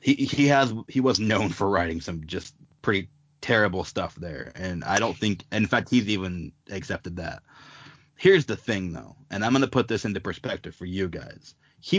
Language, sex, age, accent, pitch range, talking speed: English, male, 30-49, American, 100-135 Hz, 205 wpm